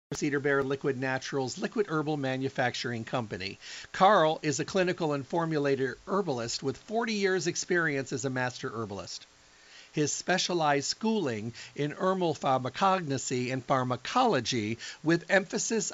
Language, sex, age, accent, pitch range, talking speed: English, male, 50-69, American, 130-175 Hz, 125 wpm